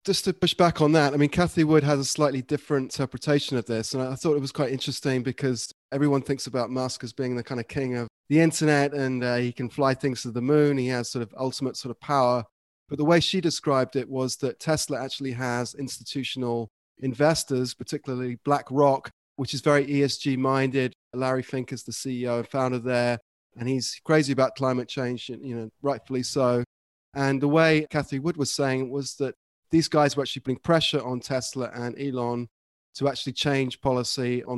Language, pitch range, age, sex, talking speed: English, 120-140 Hz, 30-49, male, 205 wpm